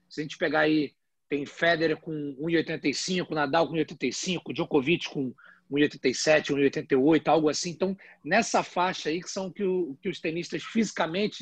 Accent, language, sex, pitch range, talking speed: Brazilian, Portuguese, male, 155-215 Hz, 165 wpm